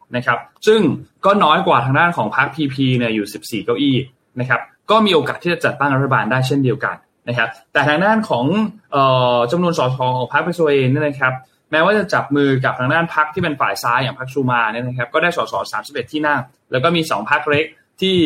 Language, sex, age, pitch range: Thai, male, 20-39, 125-155 Hz